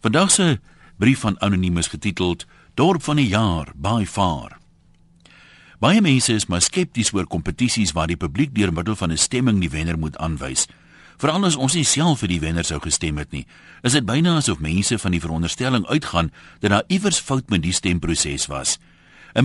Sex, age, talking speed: male, 60-79, 180 wpm